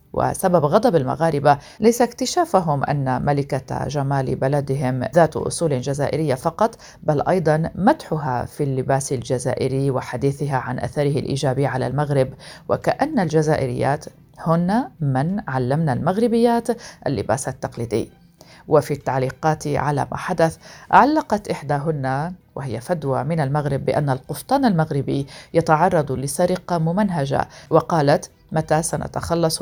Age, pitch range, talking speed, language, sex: 40-59, 135-175 Hz, 105 wpm, Arabic, female